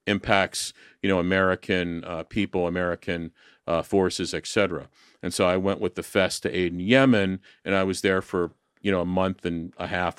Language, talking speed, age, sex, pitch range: English, 195 wpm, 40-59, male, 90-110 Hz